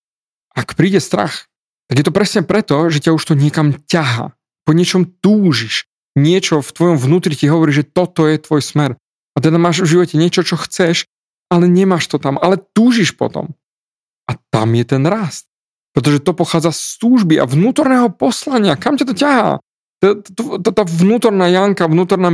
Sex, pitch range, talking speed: male, 140-190 Hz, 170 wpm